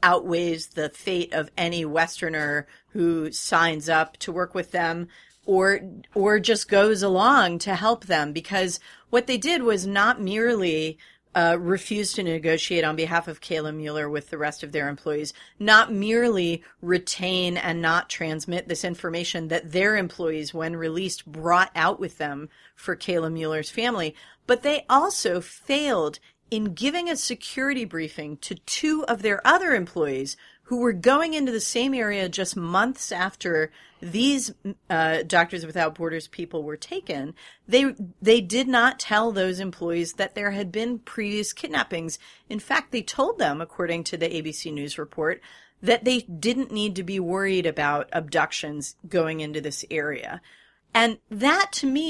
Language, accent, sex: English, American, female